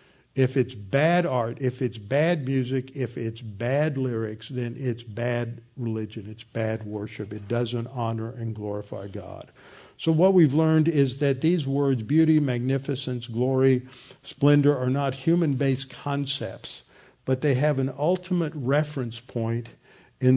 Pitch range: 120-145 Hz